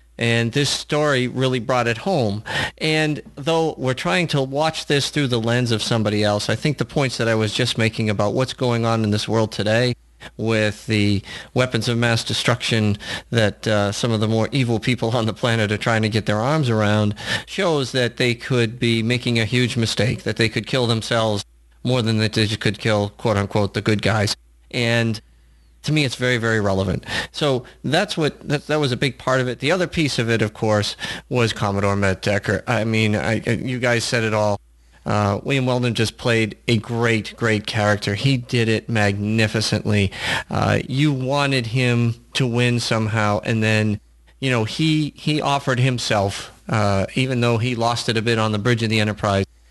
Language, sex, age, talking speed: English, male, 40-59, 200 wpm